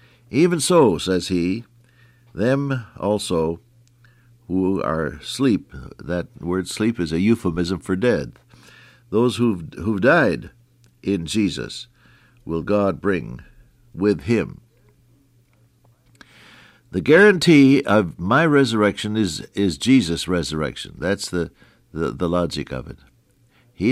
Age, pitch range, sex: 60-79, 95-125 Hz, male